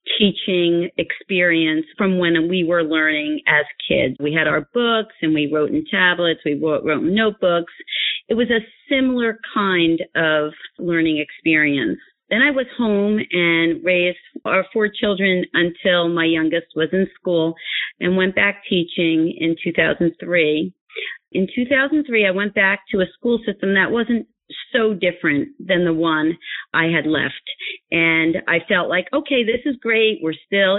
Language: English